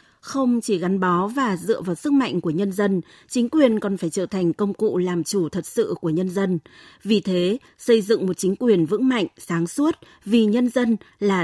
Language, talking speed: Vietnamese, 220 wpm